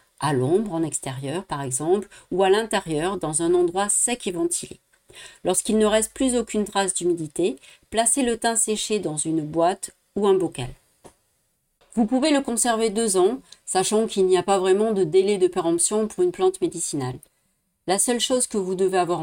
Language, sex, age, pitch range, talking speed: French, female, 40-59, 180-230 Hz, 185 wpm